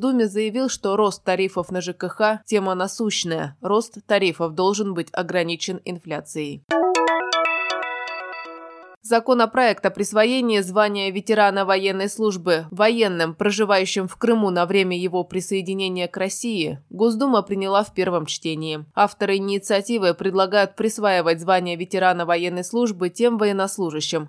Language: Russian